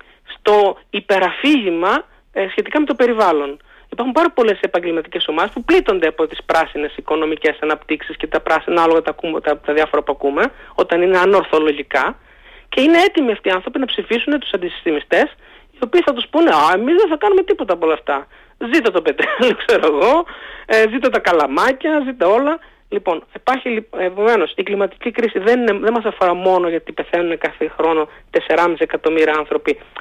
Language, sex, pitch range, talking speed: Greek, male, 155-230 Hz, 170 wpm